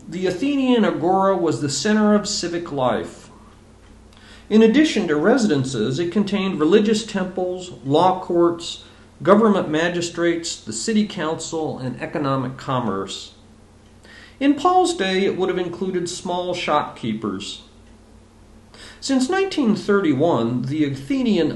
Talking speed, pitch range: 110 wpm, 110-185 Hz